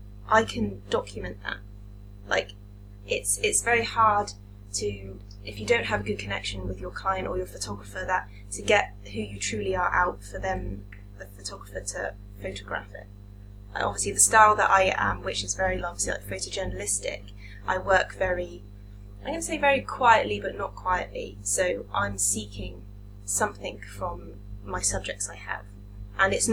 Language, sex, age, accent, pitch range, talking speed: English, female, 20-39, British, 100-105 Hz, 165 wpm